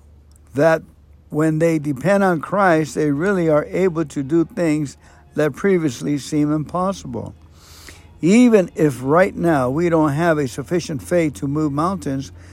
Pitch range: 140-180 Hz